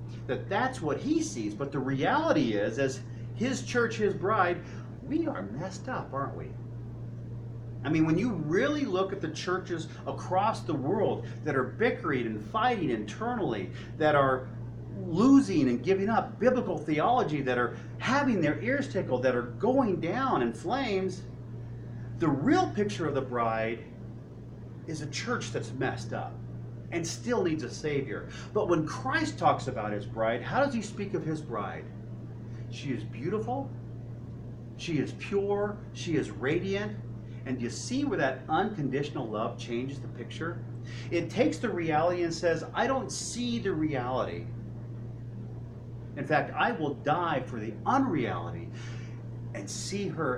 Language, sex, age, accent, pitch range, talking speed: English, male, 40-59, American, 115-150 Hz, 155 wpm